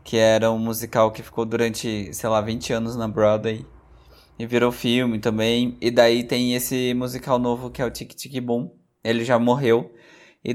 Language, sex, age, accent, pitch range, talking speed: Portuguese, male, 20-39, Brazilian, 115-135 Hz, 190 wpm